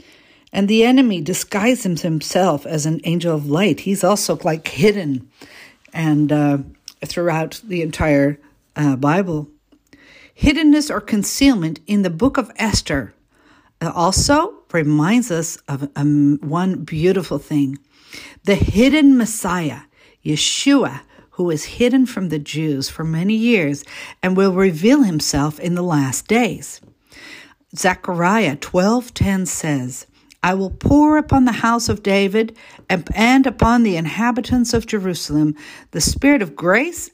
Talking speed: 130 wpm